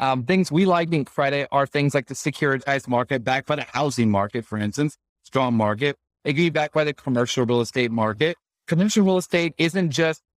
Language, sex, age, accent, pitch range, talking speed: English, male, 40-59, American, 130-175 Hz, 210 wpm